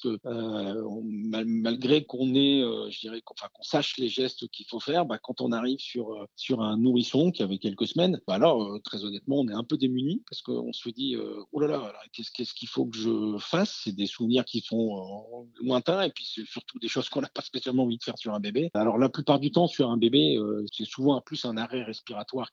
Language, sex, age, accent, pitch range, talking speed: French, male, 50-69, French, 105-130 Hz, 250 wpm